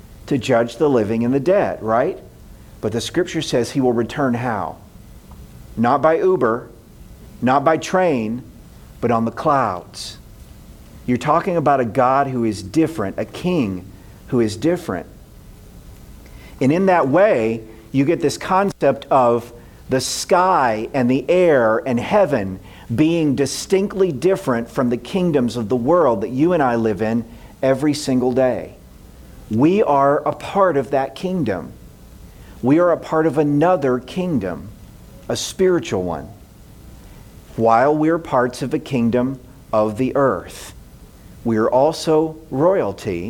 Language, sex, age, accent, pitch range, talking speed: English, male, 50-69, American, 115-155 Hz, 145 wpm